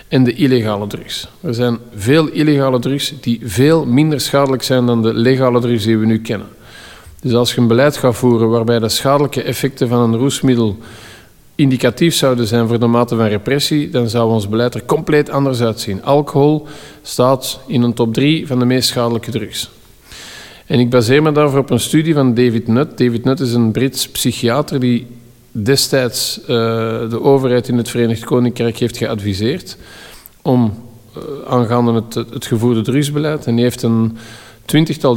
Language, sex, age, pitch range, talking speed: Dutch, male, 50-69, 115-135 Hz, 175 wpm